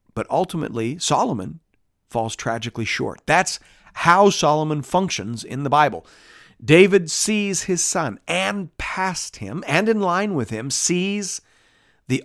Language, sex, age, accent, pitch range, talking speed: English, male, 40-59, American, 115-160 Hz, 130 wpm